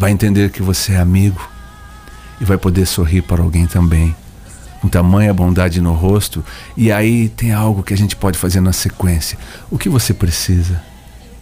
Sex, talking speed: male, 175 wpm